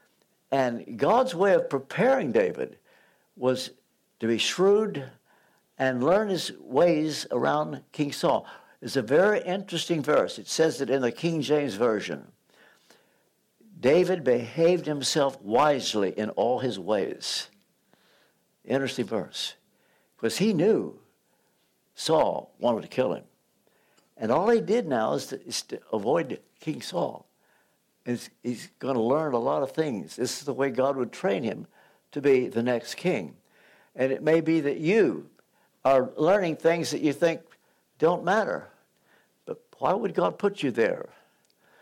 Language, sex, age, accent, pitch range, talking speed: English, male, 60-79, American, 135-175 Hz, 145 wpm